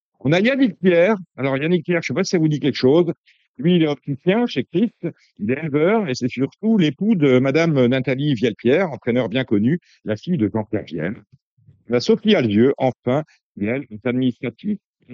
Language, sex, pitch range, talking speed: French, male, 125-180 Hz, 195 wpm